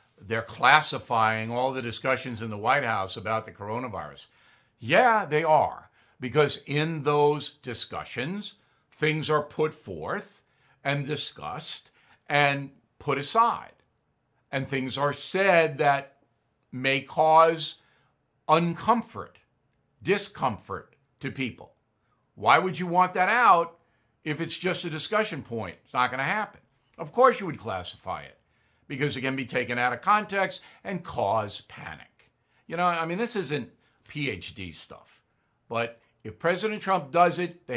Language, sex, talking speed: English, male, 140 wpm